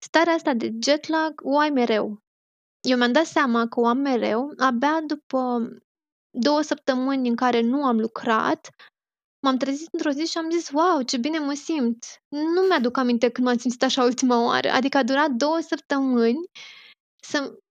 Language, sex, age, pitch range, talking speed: Romanian, female, 20-39, 240-290 Hz, 180 wpm